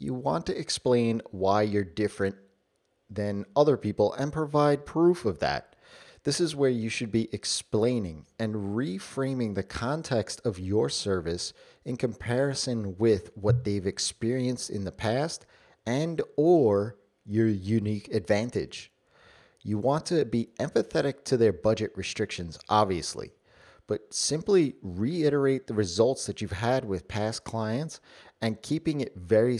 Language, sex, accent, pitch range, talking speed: English, male, American, 100-130 Hz, 140 wpm